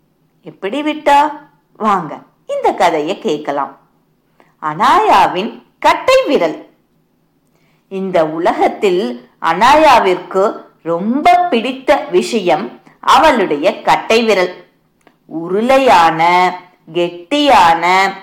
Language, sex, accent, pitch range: Tamil, female, native, 190-275 Hz